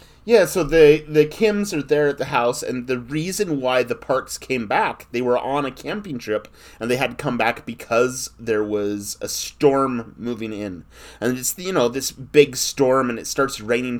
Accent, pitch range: American, 115-150 Hz